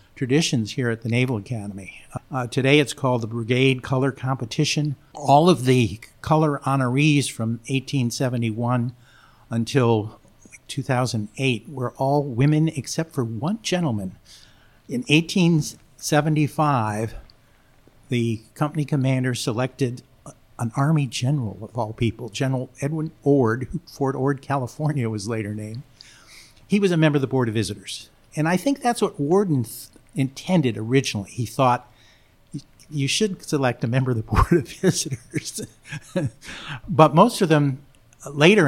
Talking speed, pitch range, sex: 135 wpm, 115-145 Hz, male